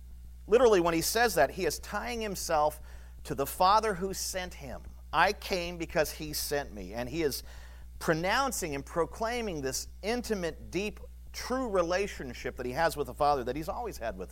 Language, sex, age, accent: English, male, 40-59, American